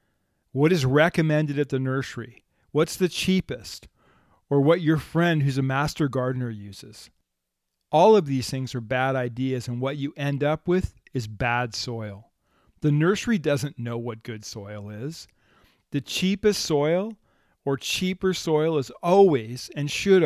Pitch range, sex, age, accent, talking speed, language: 130-160 Hz, male, 40-59, American, 155 wpm, English